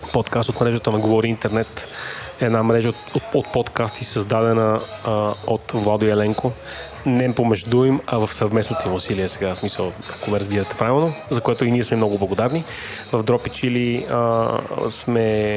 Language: Bulgarian